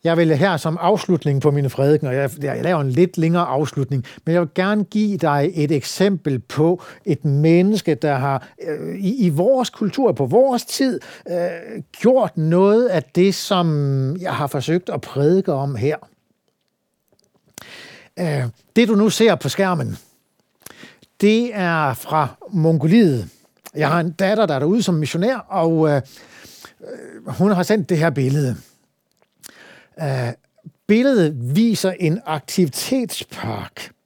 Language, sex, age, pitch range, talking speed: Danish, male, 60-79, 145-205 Hz, 135 wpm